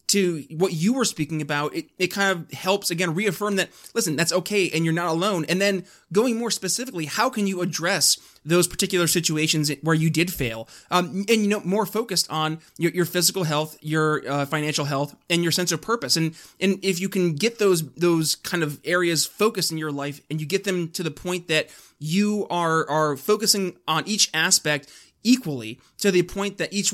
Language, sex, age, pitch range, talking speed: English, male, 20-39, 155-185 Hz, 205 wpm